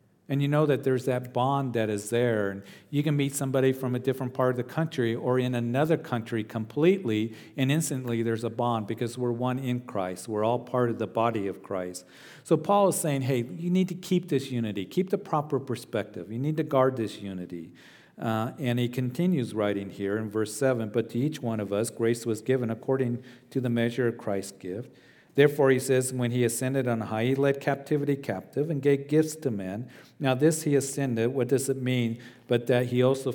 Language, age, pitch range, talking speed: English, 50-69, 115-140 Hz, 215 wpm